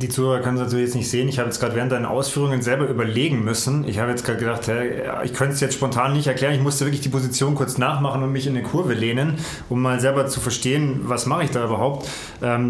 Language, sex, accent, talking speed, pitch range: German, male, German, 255 wpm, 125-145 Hz